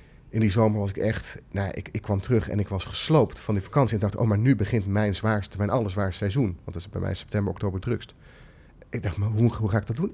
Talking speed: 265 wpm